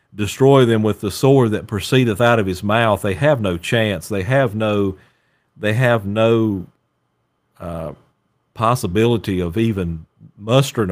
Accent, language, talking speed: American, English, 145 wpm